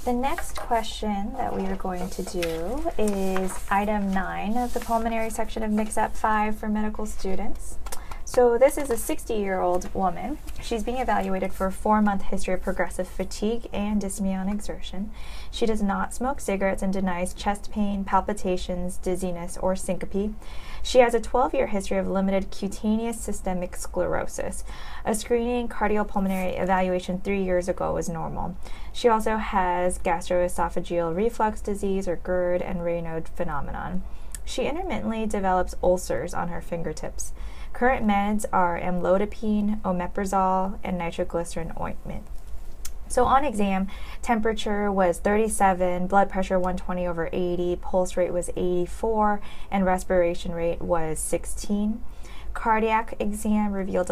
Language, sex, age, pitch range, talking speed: English, female, 20-39, 180-215 Hz, 135 wpm